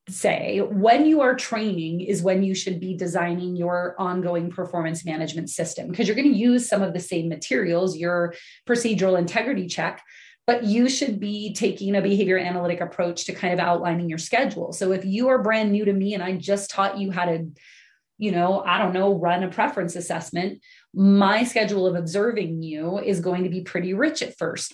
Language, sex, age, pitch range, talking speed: English, female, 30-49, 180-225 Hz, 200 wpm